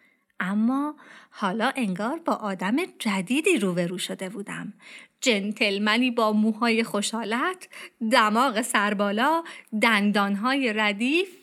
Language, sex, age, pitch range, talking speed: Persian, female, 30-49, 225-340 Hz, 90 wpm